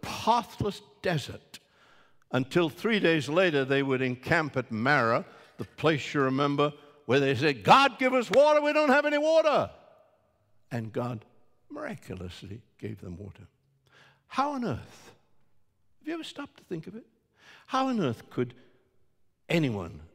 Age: 60-79